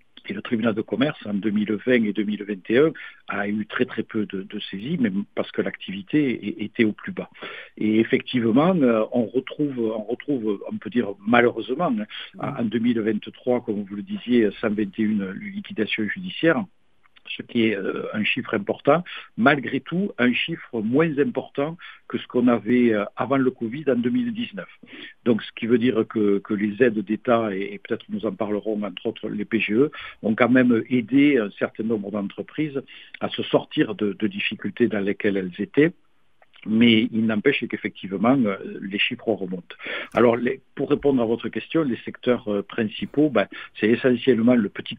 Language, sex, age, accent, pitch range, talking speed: French, male, 60-79, French, 105-130 Hz, 160 wpm